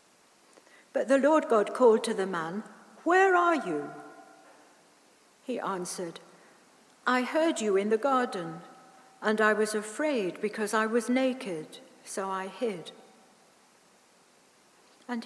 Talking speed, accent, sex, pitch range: 120 wpm, British, female, 200-265 Hz